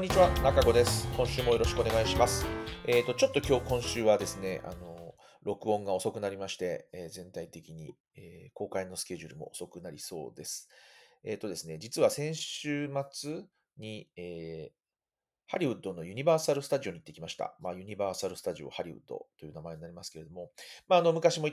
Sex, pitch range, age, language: male, 95-150 Hz, 30-49, Japanese